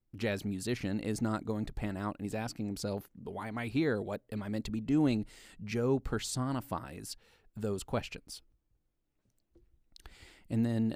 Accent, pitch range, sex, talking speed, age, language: American, 100-120 Hz, male, 160 wpm, 30-49, English